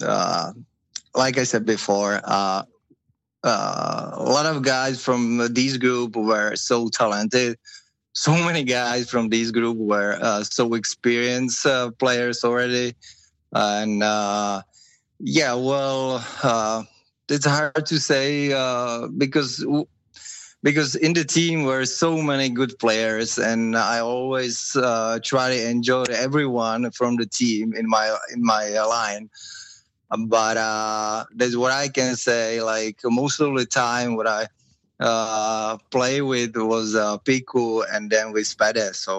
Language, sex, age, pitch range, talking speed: Finnish, male, 20-39, 110-130 Hz, 140 wpm